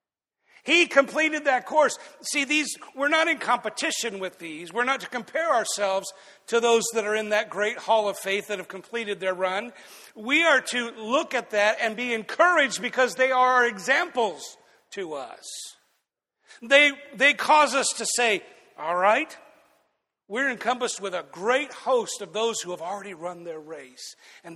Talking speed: 170 wpm